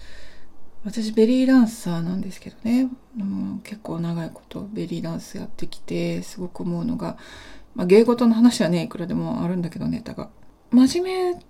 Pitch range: 185-260 Hz